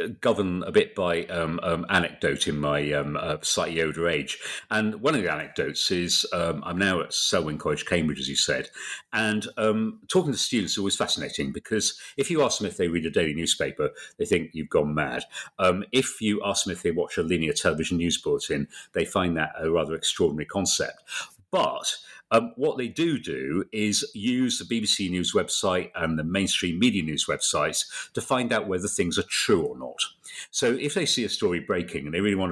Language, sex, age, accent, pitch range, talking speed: English, male, 50-69, British, 85-135 Hz, 205 wpm